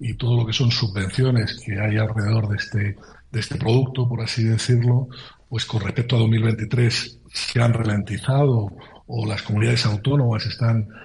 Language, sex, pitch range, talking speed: Spanish, male, 110-130 Hz, 165 wpm